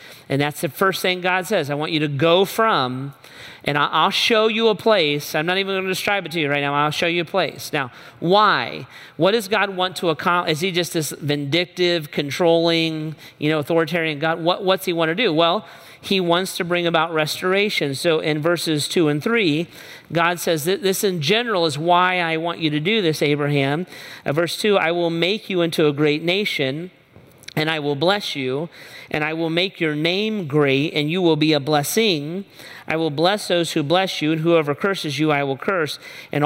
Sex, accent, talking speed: male, American, 210 wpm